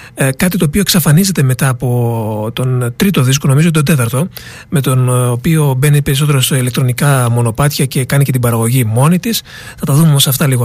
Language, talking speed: Greek, 185 wpm